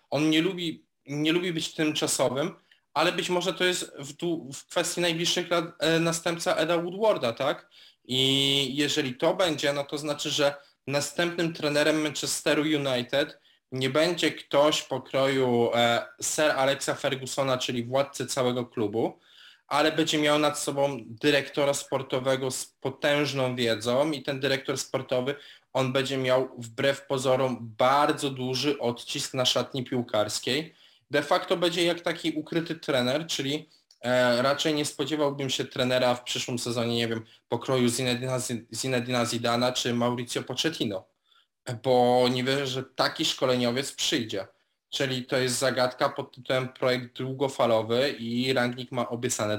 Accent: native